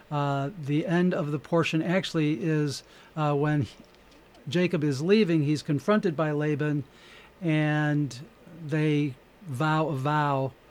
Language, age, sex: English, 60-79, male